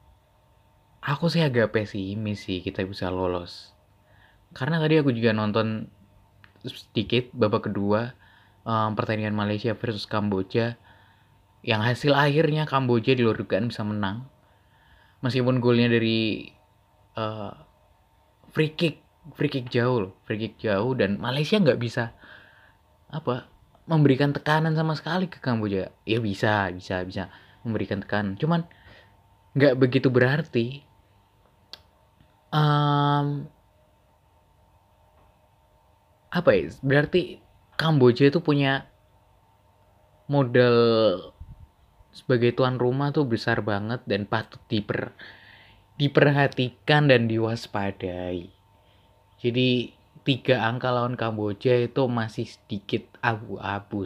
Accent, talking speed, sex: native, 100 wpm, male